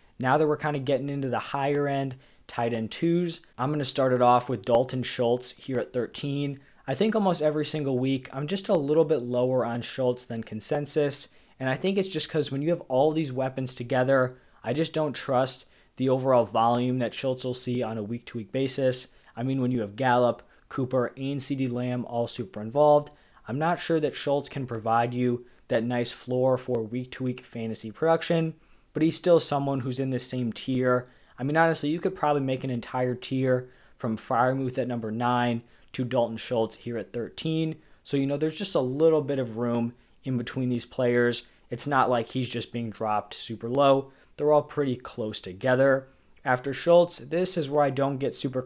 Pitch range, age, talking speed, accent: 120-145 Hz, 20-39, 200 wpm, American